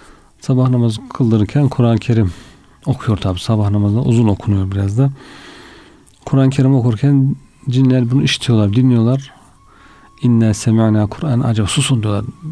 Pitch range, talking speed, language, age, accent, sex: 105-130 Hz, 125 wpm, Turkish, 40-59, native, male